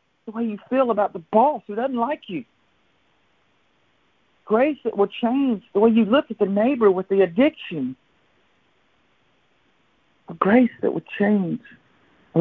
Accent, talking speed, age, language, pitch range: American, 145 wpm, 60-79, English, 150-215 Hz